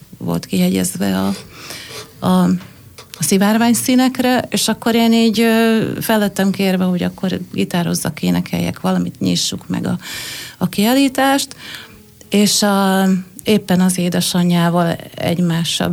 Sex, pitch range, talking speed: female, 175-200 Hz, 110 wpm